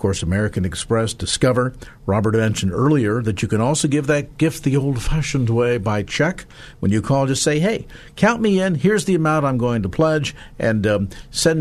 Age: 50-69